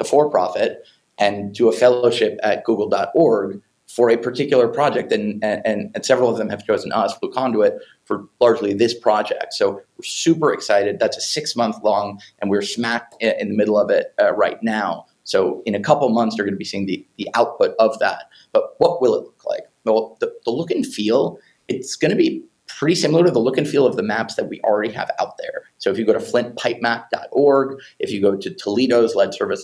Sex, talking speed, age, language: male, 215 wpm, 30-49, English